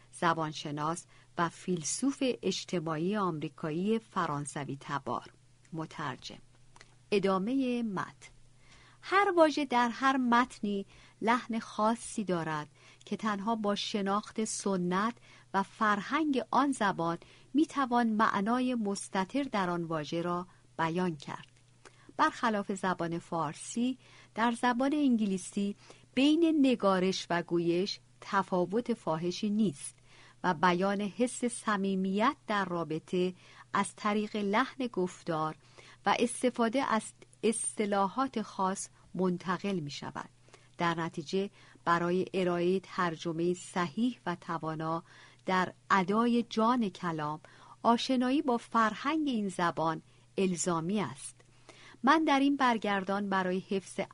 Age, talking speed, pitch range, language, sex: 50-69, 100 wpm, 165-225 Hz, Persian, female